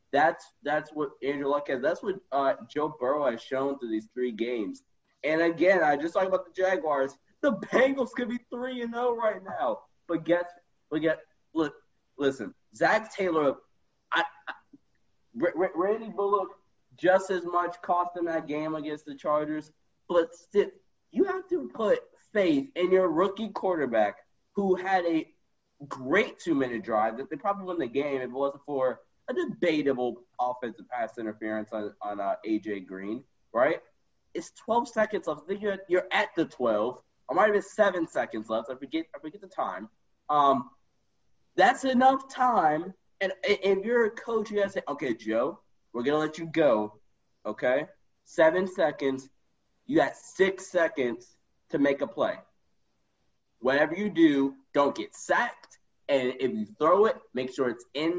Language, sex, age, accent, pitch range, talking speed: English, male, 20-39, American, 140-200 Hz, 170 wpm